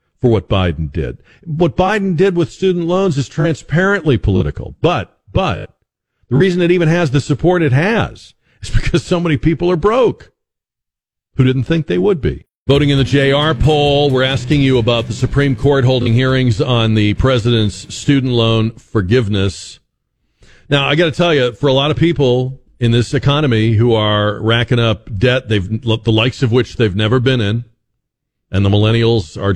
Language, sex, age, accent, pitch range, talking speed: English, male, 50-69, American, 100-140 Hz, 180 wpm